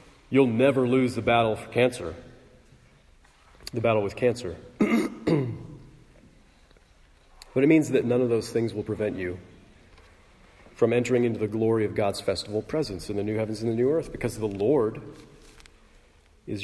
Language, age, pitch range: English, 40-59, 90-125 Hz